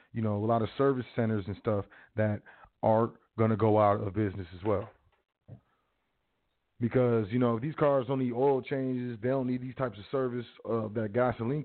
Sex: male